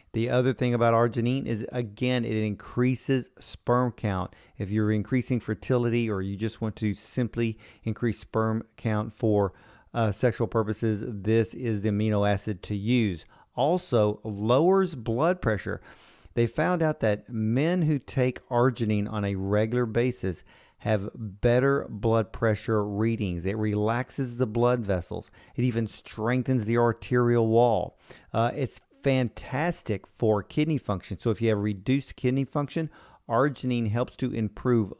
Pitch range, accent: 105-125 Hz, American